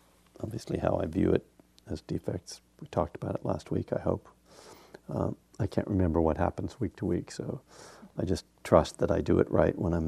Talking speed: 210 wpm